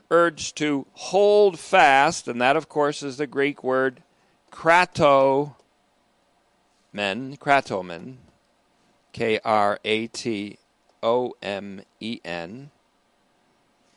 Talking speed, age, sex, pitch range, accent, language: 65 wpm, 40-59, male, 130-175 Hz, American, English